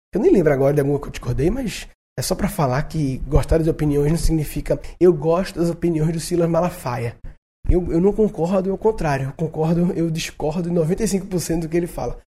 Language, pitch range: Portuguese, 145-180 Hz